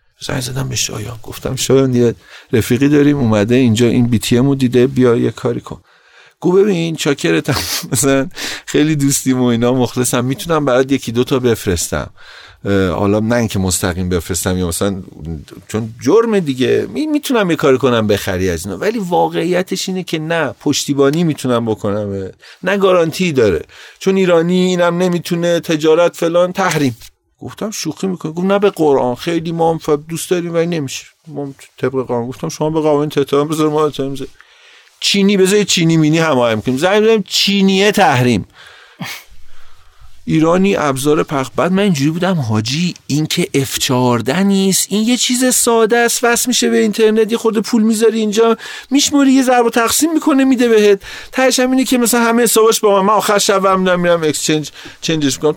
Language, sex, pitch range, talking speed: Persian, male, 125-205 Hz, 160 wpm